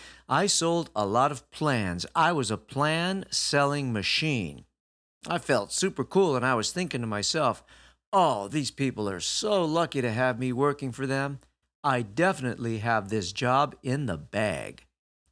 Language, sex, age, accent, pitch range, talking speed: English, male, 50-69, American, 100-150 Hz, 160 wpm